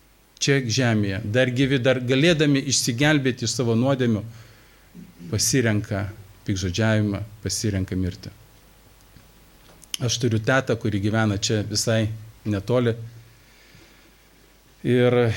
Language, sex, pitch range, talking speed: English, male, 105-125 Hz, 90 wpm